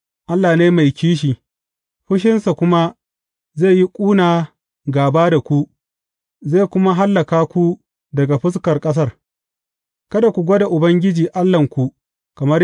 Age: 40-59